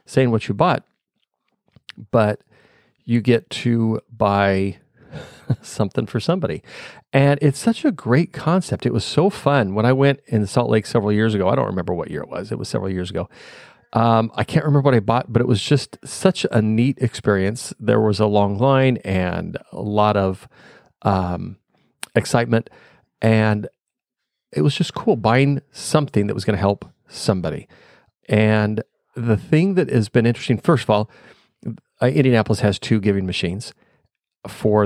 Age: 40-59